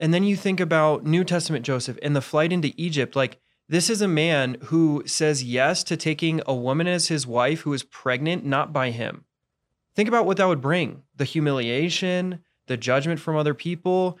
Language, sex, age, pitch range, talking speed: English, male, 20-39, 130-160 Hz, 200 wpm